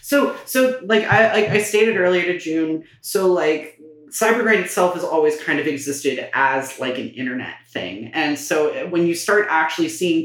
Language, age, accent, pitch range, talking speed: English, 30-49, American, 155-200 Hz, 180 wpm